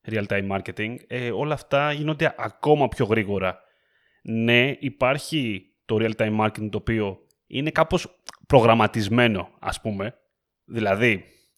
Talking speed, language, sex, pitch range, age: 110 wpm, Greek, male, 110-140 Hz, 30-49